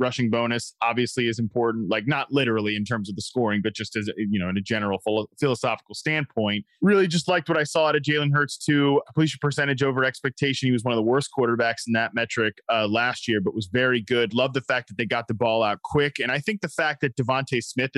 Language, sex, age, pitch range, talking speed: English, male, 20-39, 120-160 Hz, 245 wpm